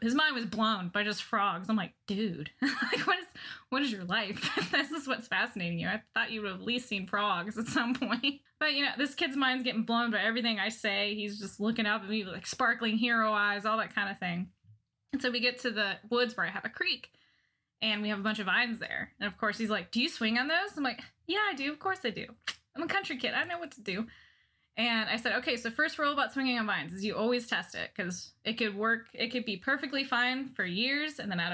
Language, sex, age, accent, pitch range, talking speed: English, female, 10-29, American, 200-260 Hz, 265 wpm